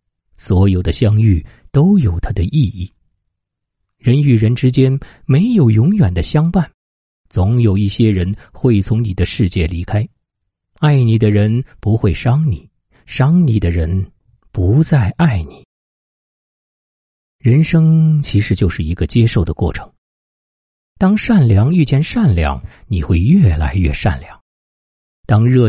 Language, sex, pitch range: Chinese, male, 85-120 Hz